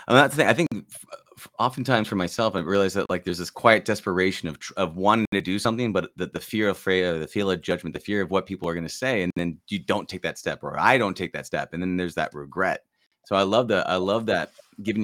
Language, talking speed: English, 280 wpm